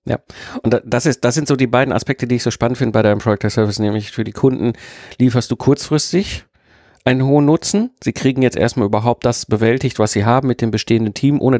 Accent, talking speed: German, 230 wpm